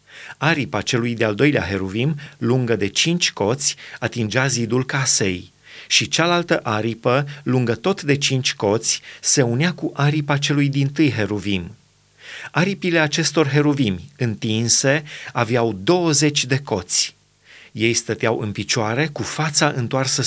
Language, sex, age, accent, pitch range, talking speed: Romanian, male, 30-49, native, 115-150 Hz, 125 wpm